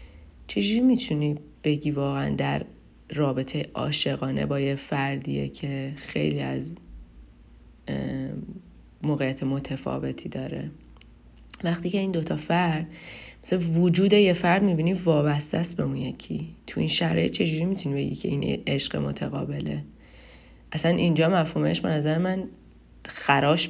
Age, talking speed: 30-49, 120 wpm